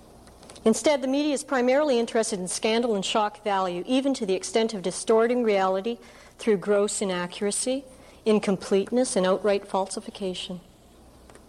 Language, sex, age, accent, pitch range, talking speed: English, female, 60-79, American, 190-235 Hz, 130 wpm